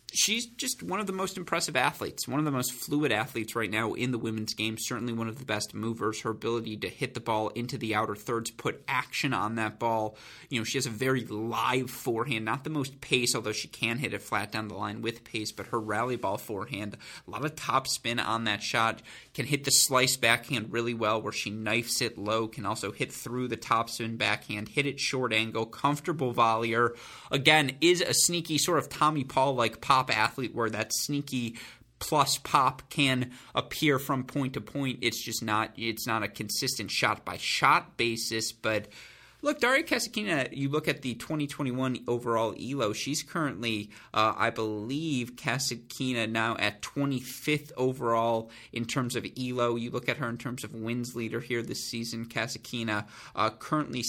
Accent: American